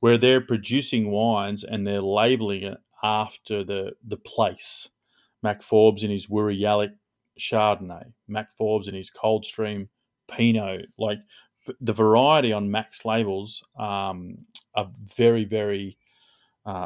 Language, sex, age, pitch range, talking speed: English, male, 30-49, 105-115 Hz, 130 wpm